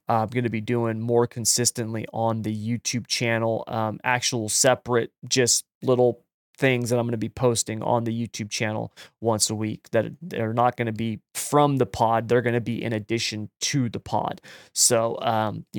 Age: 20-39